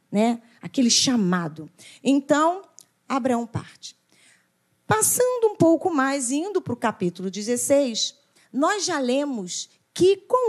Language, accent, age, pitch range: Portuguese, Brazilian, 40-59, 215-295 Hz